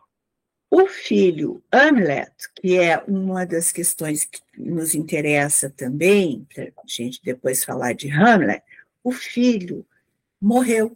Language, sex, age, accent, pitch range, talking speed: Portuguese, female, 50-69, Brazilian, 150-205 Hz, 120 wpm